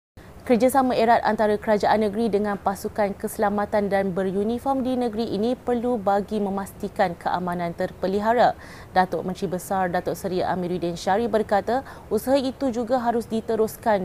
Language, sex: Malay, female